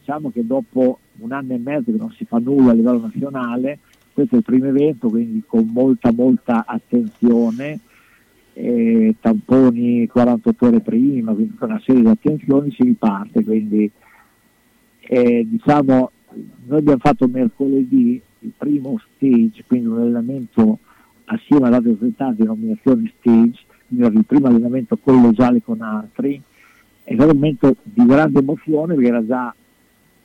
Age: 50-69